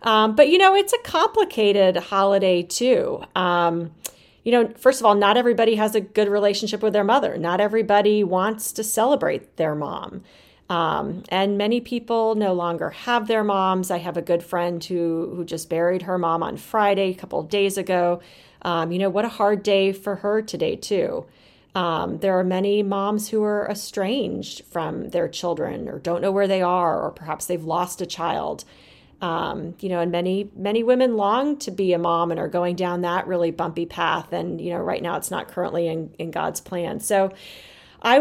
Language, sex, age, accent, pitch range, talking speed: English, female, 30-49, American, 180-225 Hz, 200 wpm